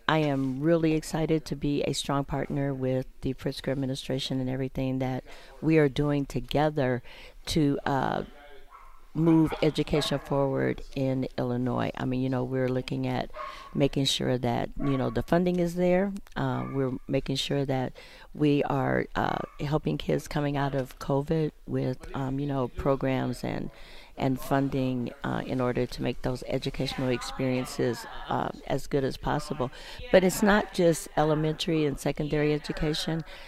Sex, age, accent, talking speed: female, 50-69, American, 155 wpm